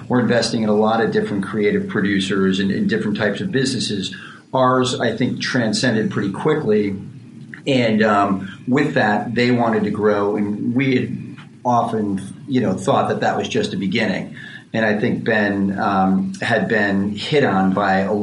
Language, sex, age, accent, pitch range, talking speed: English, male, 40-59, American, 100-115 Hz, 175 wpm